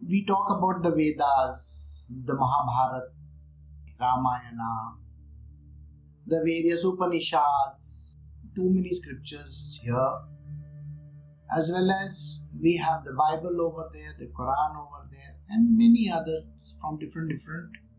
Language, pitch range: English, 115-170 Hz